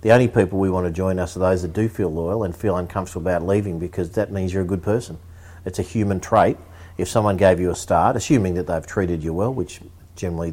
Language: English